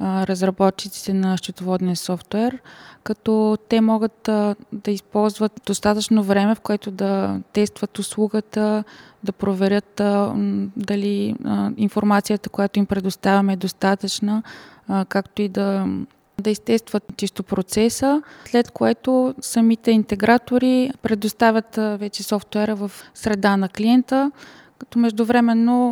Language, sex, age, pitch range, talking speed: Bulgarian, female, 20-39, 195-220 Hz, 105 wpm